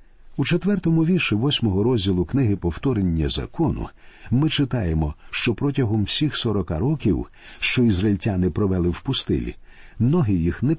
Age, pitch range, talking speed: 50-69, 95-130 Hz, 130 wpm